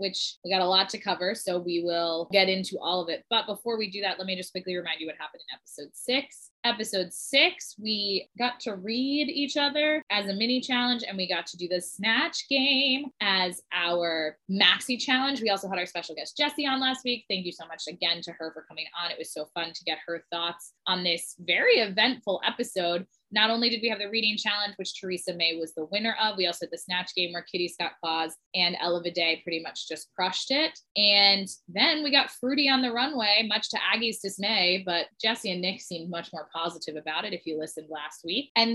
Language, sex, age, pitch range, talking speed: English, female, 20-39, 175-245 Hz, 230 wpm